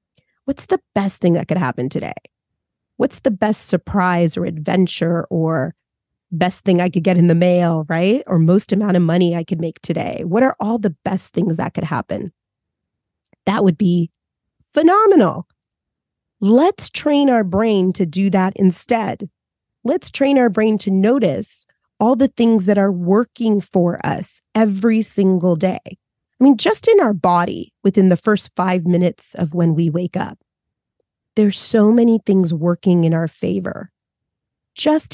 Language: English